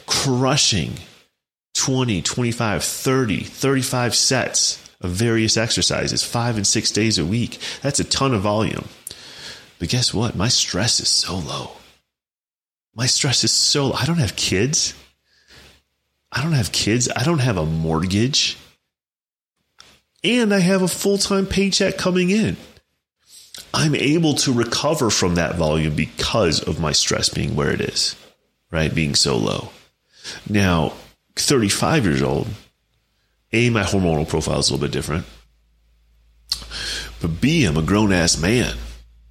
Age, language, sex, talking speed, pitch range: 30-49, English, male, 140 wpm, 80-120 Hz